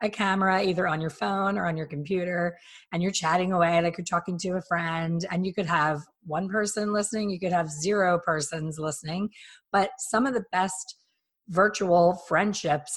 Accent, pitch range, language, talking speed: American, 160-195 Hz, English, 185 wpm